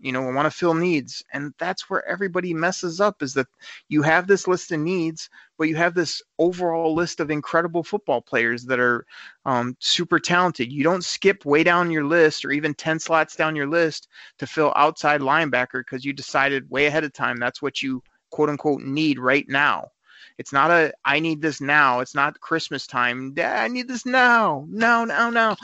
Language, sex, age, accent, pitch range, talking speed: English, male, 30-49, American, 135-170 Hz, 205 wpm